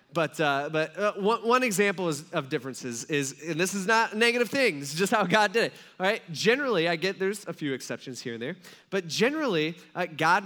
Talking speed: 240 wpm